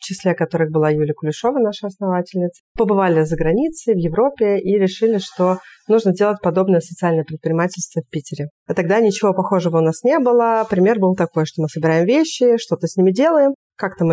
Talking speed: 185 wpm